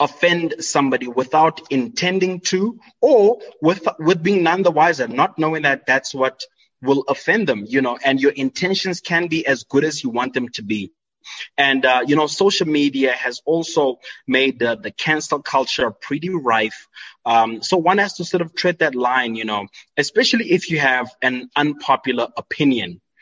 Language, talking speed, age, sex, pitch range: English, 180 wpm, 20-39, male, 125-165 Hz